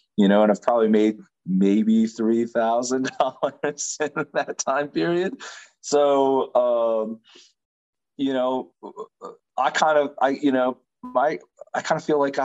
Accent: American